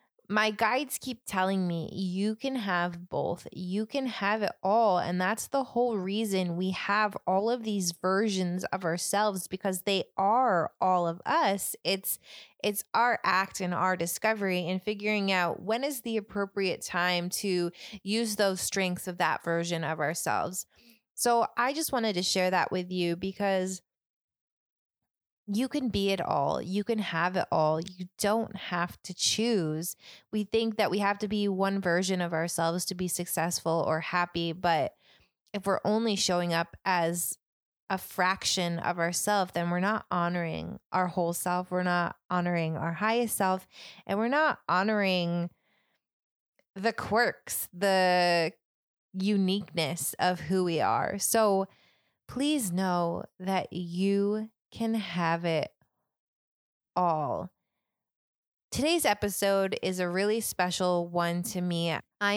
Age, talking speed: 20-39, 145 wpm